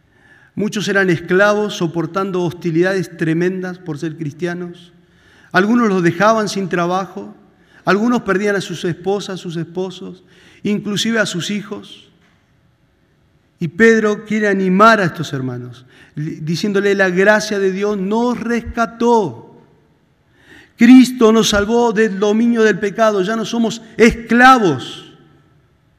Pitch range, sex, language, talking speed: 155-200 Hz, male, Spanish, 120 wpm